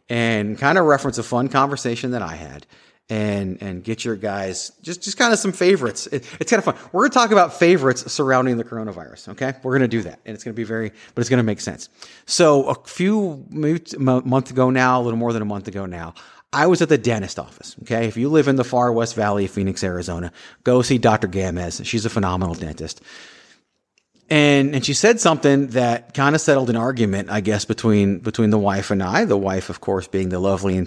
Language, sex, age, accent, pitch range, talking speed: English, male, 30-49, American, 100-140 Hz, 235 wpm